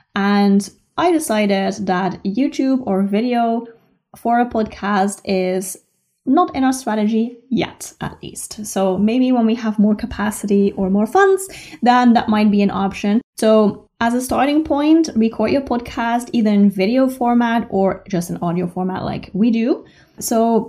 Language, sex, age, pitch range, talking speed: English, female, 20-39, 195-250 Hz, 160 wpm